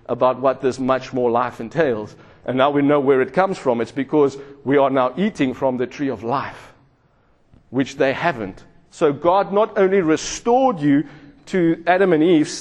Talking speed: 185 wpm